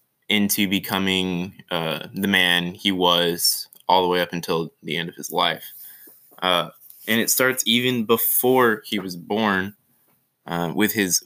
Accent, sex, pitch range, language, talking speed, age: American, male, 90-105 Hz, English, 155 wpm, 20-39